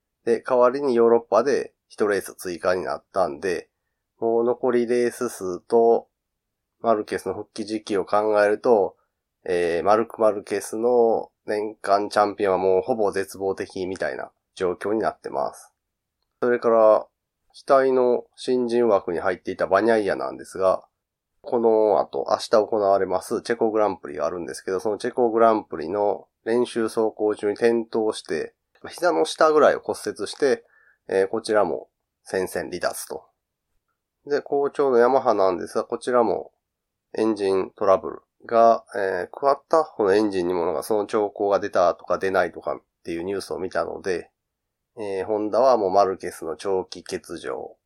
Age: 30-49